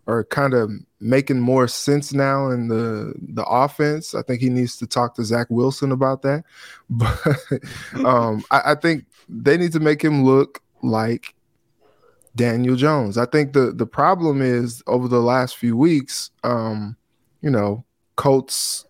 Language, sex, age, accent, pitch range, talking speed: English, male, 20-39, American, 120-145 Hz, 160 wpm